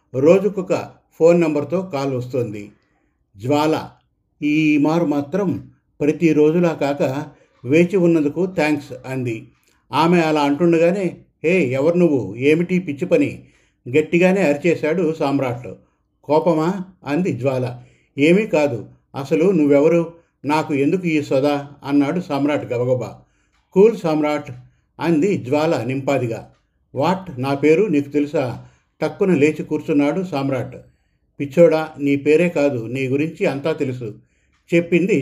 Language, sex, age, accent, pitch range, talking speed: Telugu, male, 50-69, native, 135-165 Hz, 110 wpm